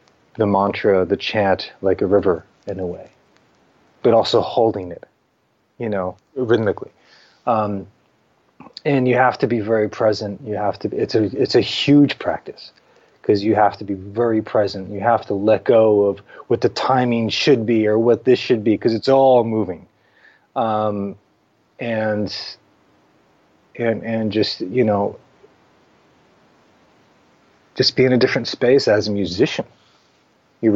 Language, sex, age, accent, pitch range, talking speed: English, male, 30-49, American, 105-125 Hz, 150 wpm